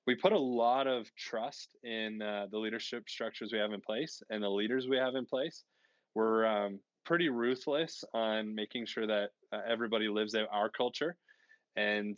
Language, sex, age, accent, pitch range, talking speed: English, male, 20-39, American, 105-125 Hz, 180 wpm